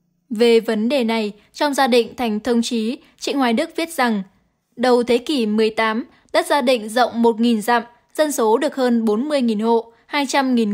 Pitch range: 230-270 Hz